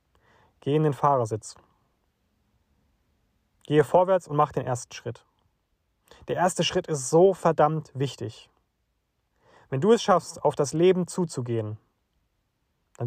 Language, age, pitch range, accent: German, 30-49, 105-160 Hz, German